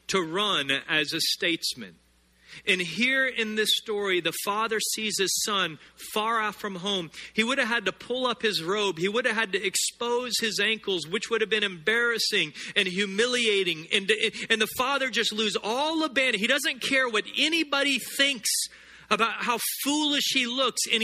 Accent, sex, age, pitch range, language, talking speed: American, male, 40-59, 190-250 Hz, English, 180 wpm